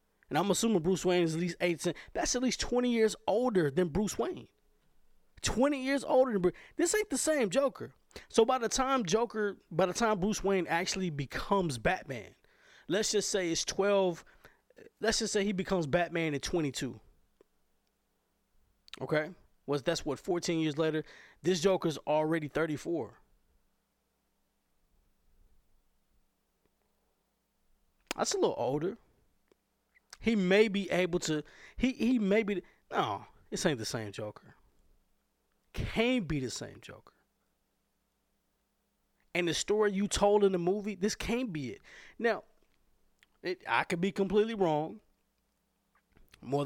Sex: male